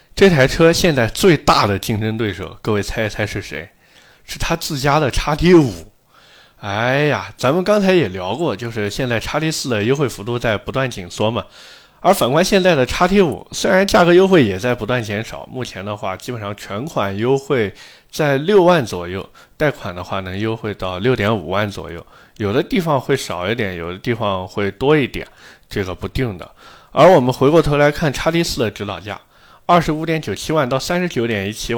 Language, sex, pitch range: Chinese, male, 100-150 Hz